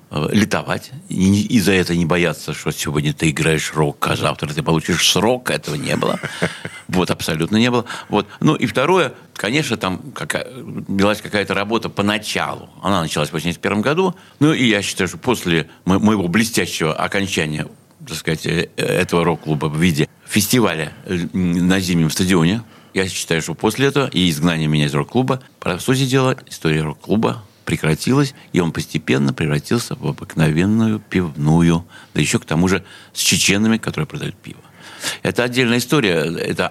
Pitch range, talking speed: 85-110 Hz, 155 wpm